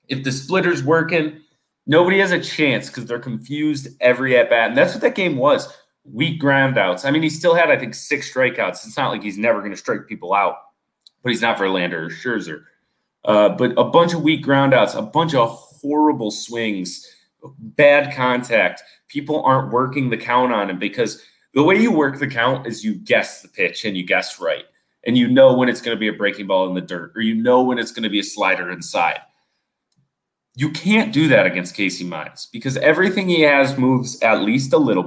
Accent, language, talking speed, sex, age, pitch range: American, English, 215 wpm, male, 30-49, 115-155 Hz